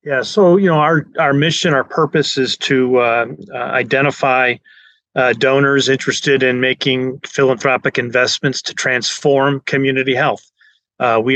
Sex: male